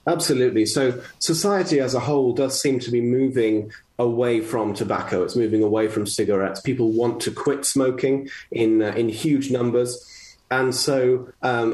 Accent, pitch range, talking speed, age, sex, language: British, 110-140 Hz, 165 wpm, 30-49, male, English